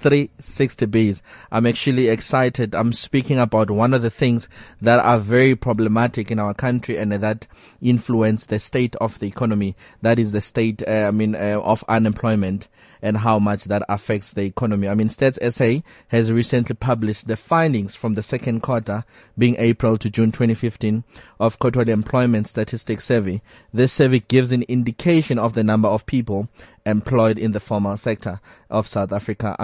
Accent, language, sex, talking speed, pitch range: South African, English, male, 175 wpm, 105-120 Hz